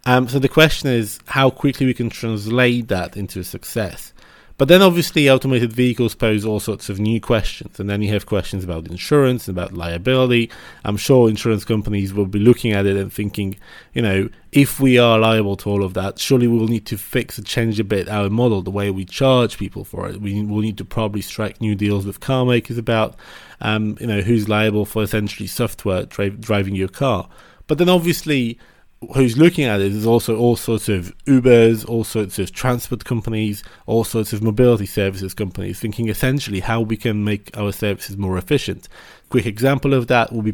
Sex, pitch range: male, 100-120 Hz